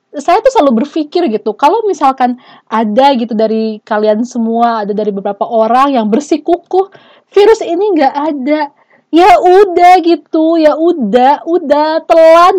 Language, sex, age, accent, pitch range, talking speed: Indonesian, female, 20-39, native, 265-365 Hz, 140 wpm